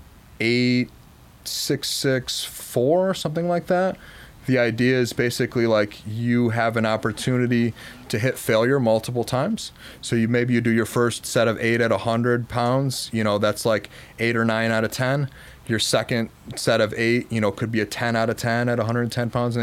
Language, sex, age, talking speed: English, male, 30-49, 195 wpm